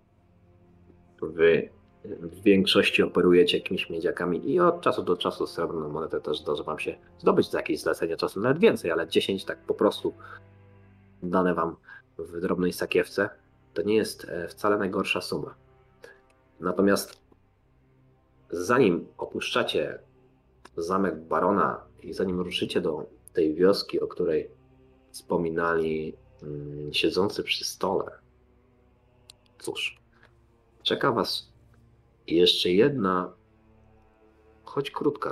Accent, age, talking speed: native, 30-49, 110 wpm